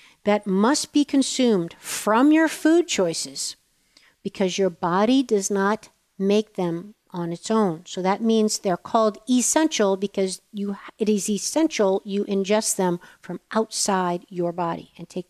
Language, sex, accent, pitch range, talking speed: English, female, American, 190-230 Hz, 150 wpm